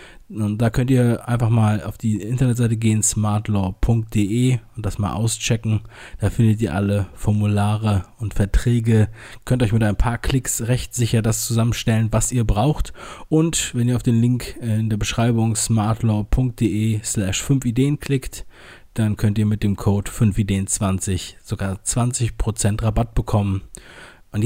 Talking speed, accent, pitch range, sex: 145 wpm, German, 105-125 Hz, male